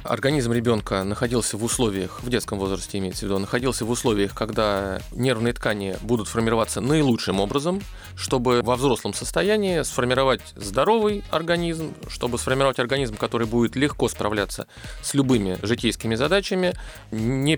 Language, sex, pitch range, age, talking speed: Russian, male, 110-140 Hz, 30-49, 135 wpm